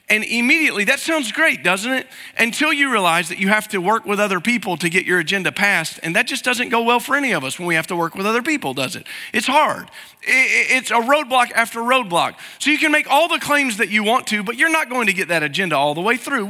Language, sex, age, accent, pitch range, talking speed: English, male, 40-59, American, 180-250 Hz, 265 wpm